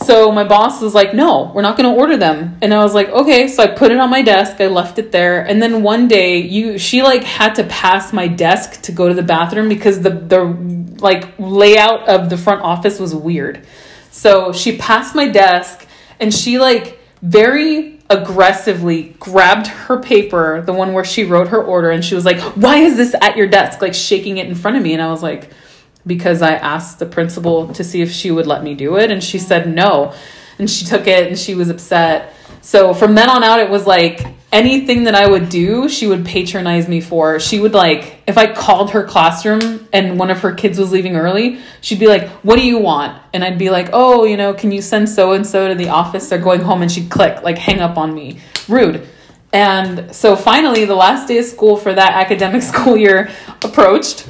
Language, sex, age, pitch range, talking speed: English, female, 20-39, 175-220 Hz, 230 wpm